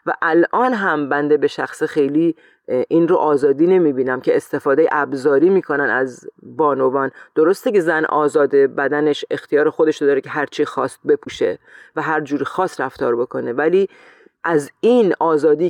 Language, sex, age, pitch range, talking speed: Persian, female, 40-59, 150-225 Hz, 160 wpm